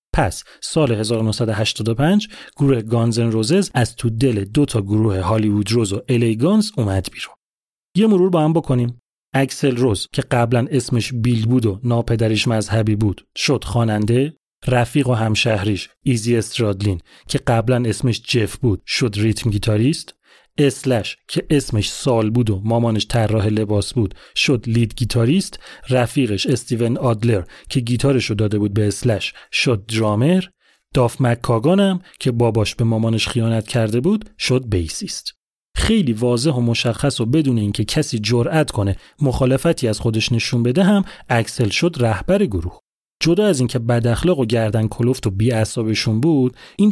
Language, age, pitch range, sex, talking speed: Persian, 30-49, 110-140 Hz, male, 150 wpm